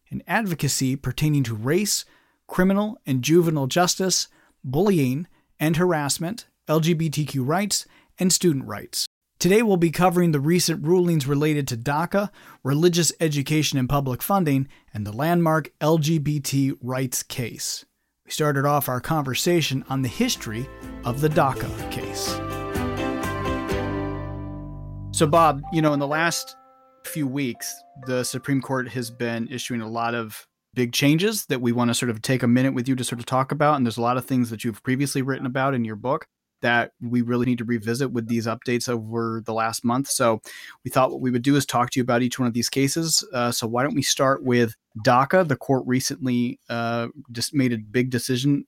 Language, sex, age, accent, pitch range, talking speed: English, male, 30-49, American, 120-155 Hz, 180 wpm